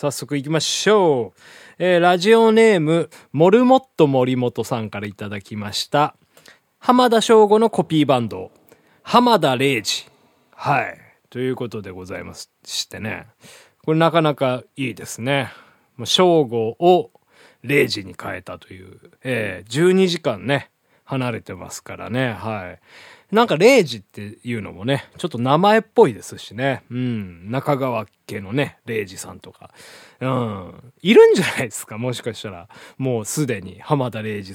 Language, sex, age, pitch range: Japanese, male, 20-39, 110-170 Hz